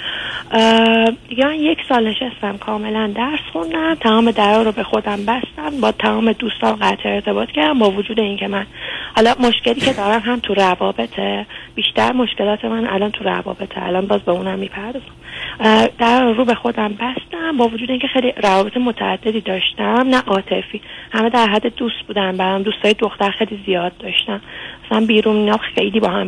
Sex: female